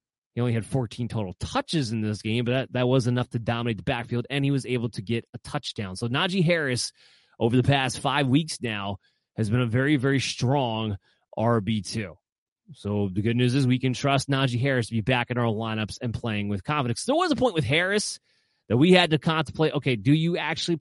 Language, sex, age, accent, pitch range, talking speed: English, male, 30-49, American, 115-155 Hz, 225 wpm